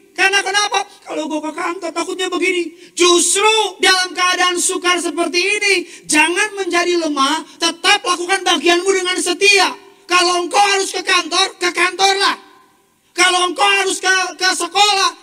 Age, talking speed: 30-49, 140 wpm